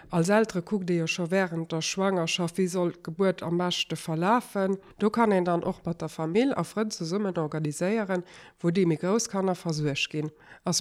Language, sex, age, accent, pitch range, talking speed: French, female, 50-69, German, 165-195 Hz, 200 wpm